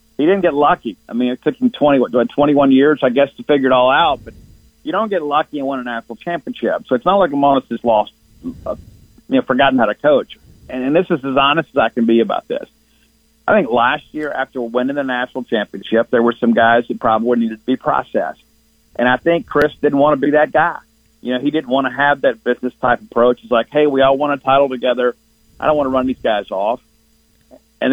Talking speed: 230 wpm